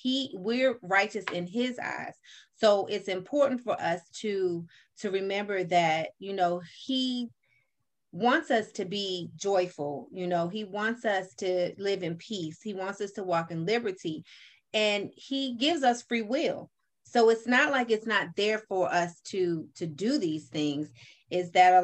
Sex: female